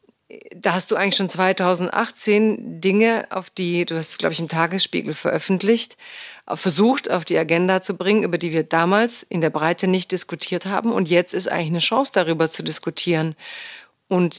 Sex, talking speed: female, 175 wpm